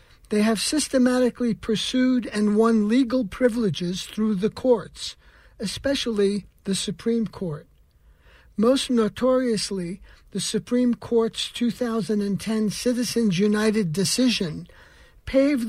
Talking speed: 95 wpm